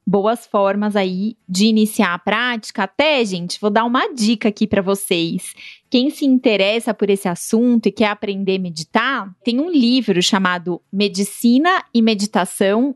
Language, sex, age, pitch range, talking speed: Portuguese, female, 20-39, 200-245 Hz, 160 wpm